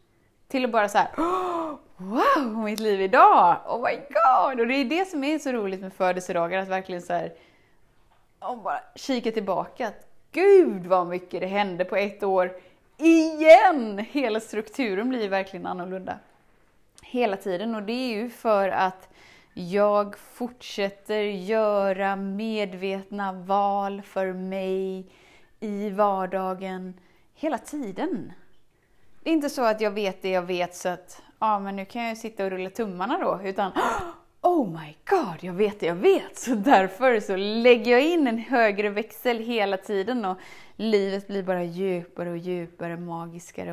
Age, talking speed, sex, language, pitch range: 20-39, 160 wpm, female, Swedish, 190-255 Hz